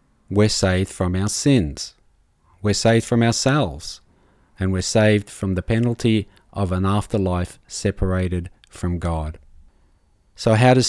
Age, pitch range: 40-59, 90-110 Hz